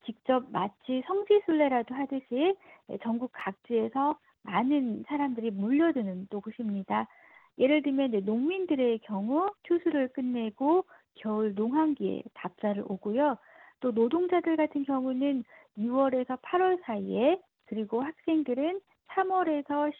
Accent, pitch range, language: native, 220-305 Hz, Korean